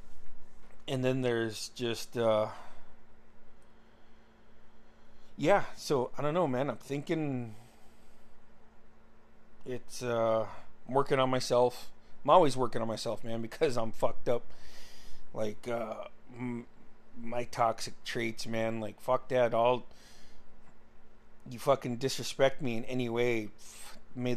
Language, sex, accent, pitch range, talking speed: English, male, American, 115-140 Hz, 120 wpm